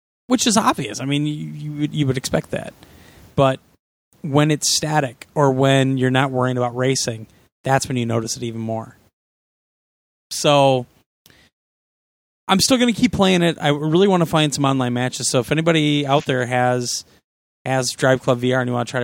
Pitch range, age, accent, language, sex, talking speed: 120-150 Hz, 30-49, American, English, male, 185 wpm